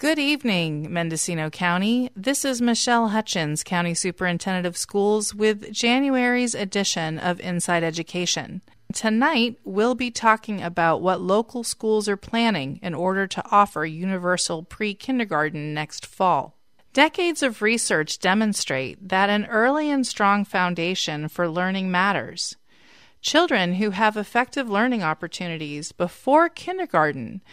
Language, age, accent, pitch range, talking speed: English, 30-49, American, 175-245 Hz, 125 wpm